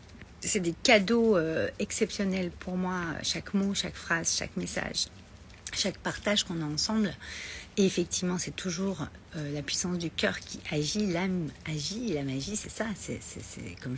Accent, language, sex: French, French, female